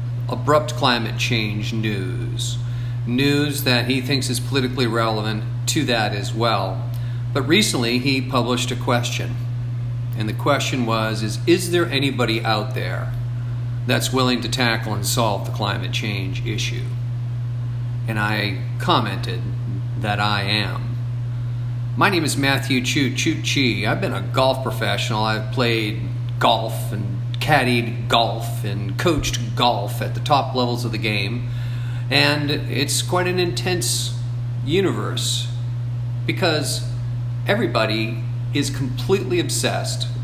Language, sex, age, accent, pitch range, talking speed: English, male, 40-59, American, 120-125 Hz, 130 wpm